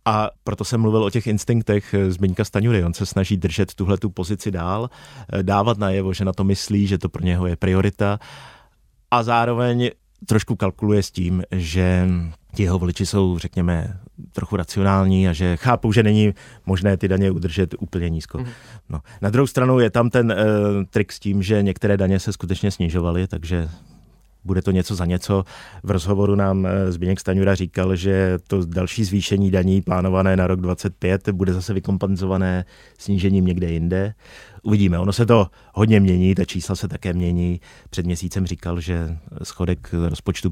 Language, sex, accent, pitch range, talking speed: Czech, male, native, 90-105 Hz, 170 wpm